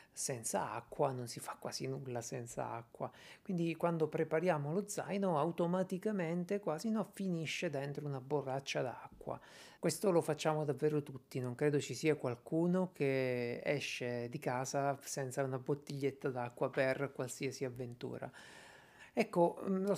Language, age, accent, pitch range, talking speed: Italian, 50-69, native, 130-165 Hz, 135 wpm